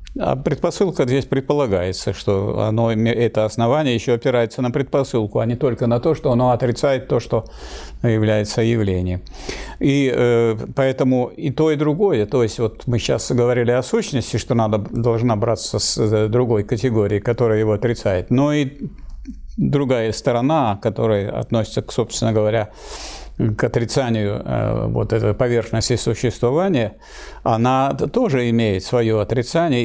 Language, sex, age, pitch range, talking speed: Russian, male, 50-69, 110-135 Hz, 140 wpm